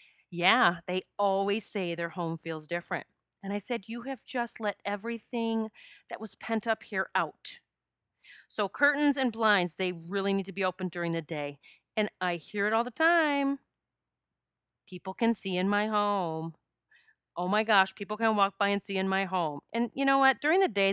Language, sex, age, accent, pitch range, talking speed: English, female, 30-49, American, 180-240 Hz, 190 wpm